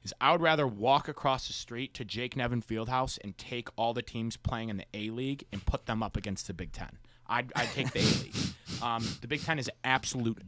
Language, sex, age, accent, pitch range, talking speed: English, male, 30-49, American, 110-155 Hz, 230 wpm